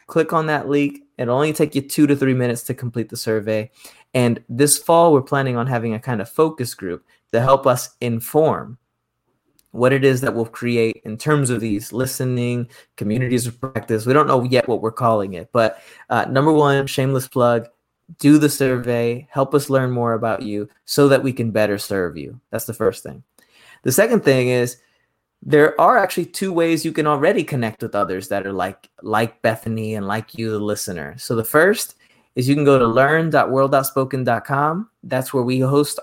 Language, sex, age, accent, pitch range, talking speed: English, male, 20-39, American, 115-145 Hz, 195 wpm